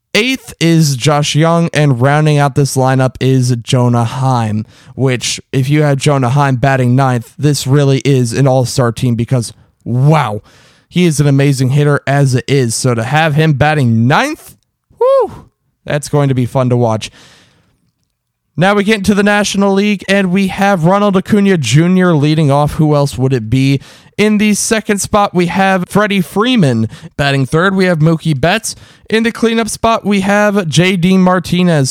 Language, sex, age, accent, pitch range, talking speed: English, male, 20-39, American, 135-195 Hz, 170 wpm